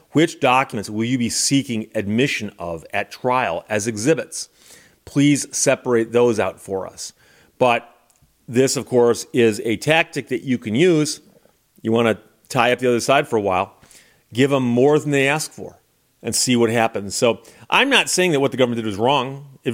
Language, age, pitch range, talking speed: English, 40-59, 110-140 Hz, 190 wpm